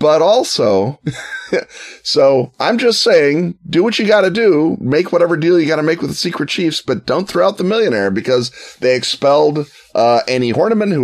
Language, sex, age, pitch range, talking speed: English, male, 30-49, 105-160 Hz, 195 wpm